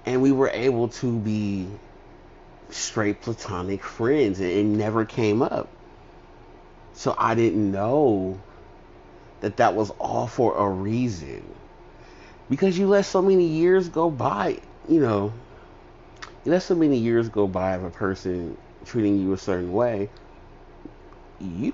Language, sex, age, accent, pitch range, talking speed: English, male, 30-49, American, 100-150 Hz, 140 wpm